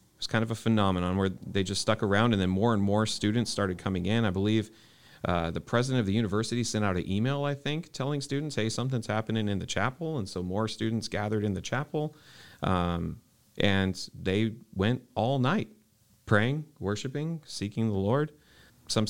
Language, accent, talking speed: English, American, 190 wpm